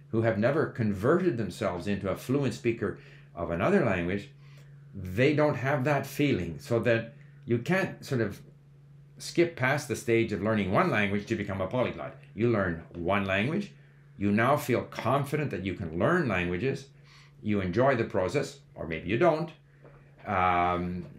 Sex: male